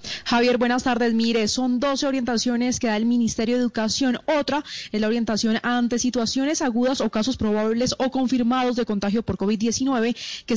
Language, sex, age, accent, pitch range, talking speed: Spanish, female, 20-39, Colombian, 215-260 Hz, 170 wpm